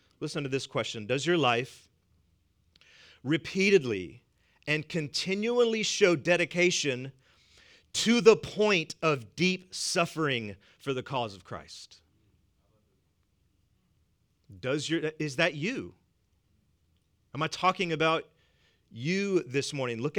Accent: American